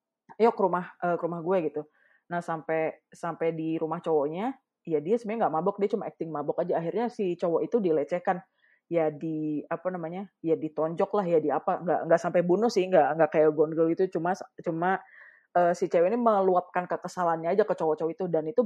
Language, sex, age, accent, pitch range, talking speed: Indonesian, female, 20-39, native, 160-205 Hz, 200 wpm